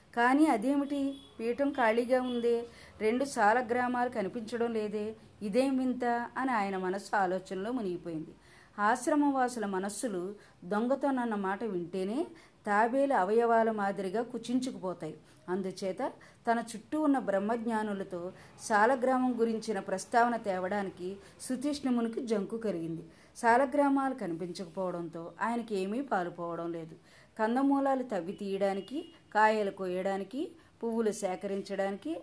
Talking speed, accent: 90 wpm, native